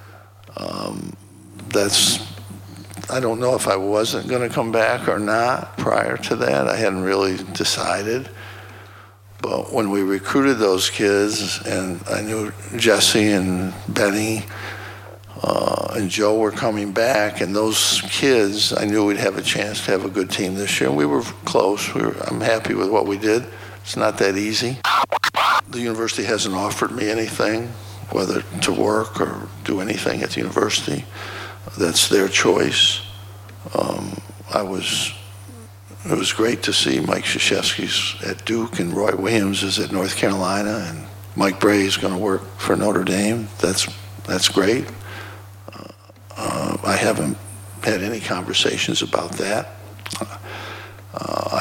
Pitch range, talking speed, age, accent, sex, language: 100-105 Hz, 145 wpm, 60-79, American, male, English